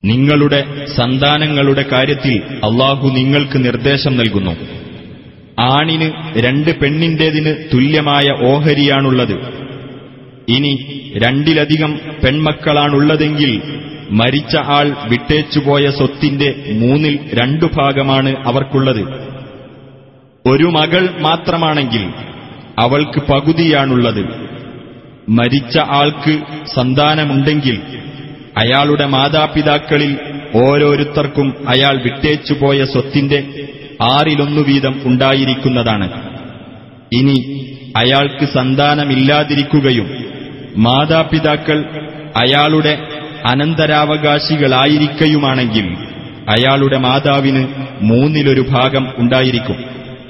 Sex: male